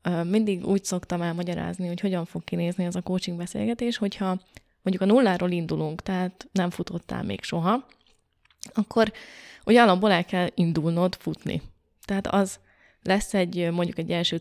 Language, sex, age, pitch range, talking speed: Hungarian, female, 20-39, 175-215 Hz, 145 wpm